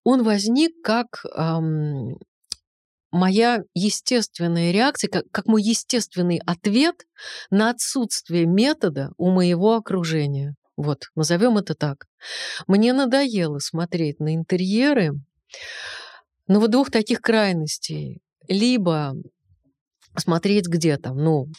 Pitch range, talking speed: 170-230 Hz, 105 wpm